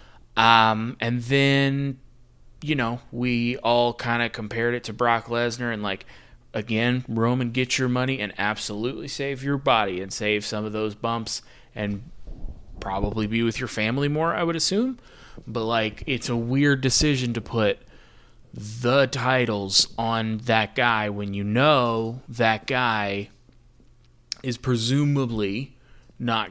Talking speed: 145 wpm